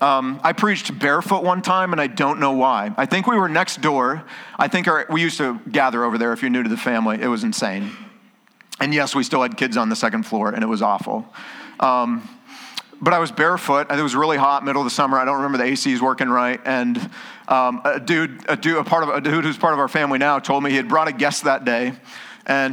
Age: 40-59